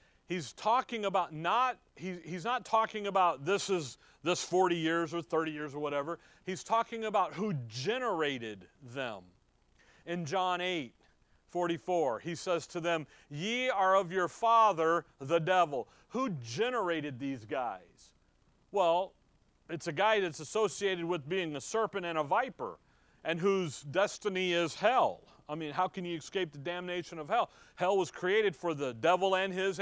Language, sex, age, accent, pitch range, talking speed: English, male, 40-59, American, 160-200 Hz, 155 wpm